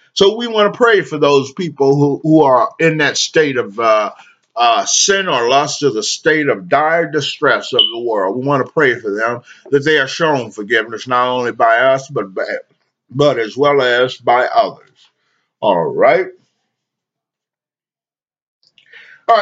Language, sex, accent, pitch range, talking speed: English, male, American, 130-200 Hz, 170 wpm